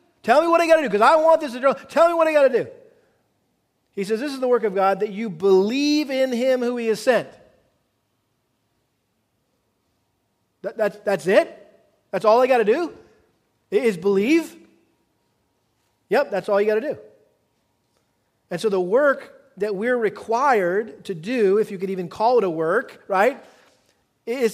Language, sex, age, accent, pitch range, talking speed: English, male, 40-59, American, 195-255 Hz, 180 wpm